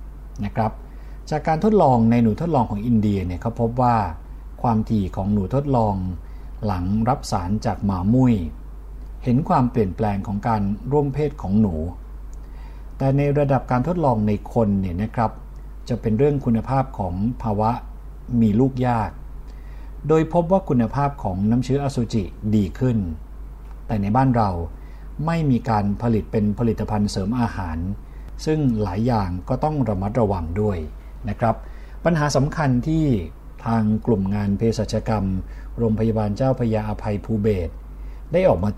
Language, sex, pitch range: Thai, male, 90-125 Hz